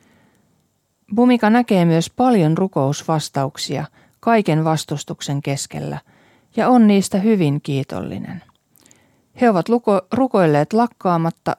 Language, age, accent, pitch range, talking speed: Finnish, 40-59, native, 150-205 Hz, 95 wpm